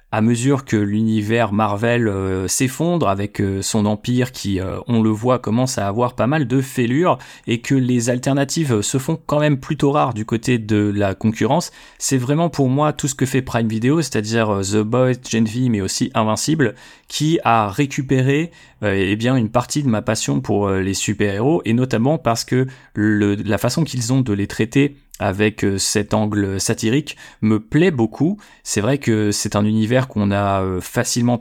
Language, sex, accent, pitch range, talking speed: French, male, French, 105-135 Hz, 190 wpm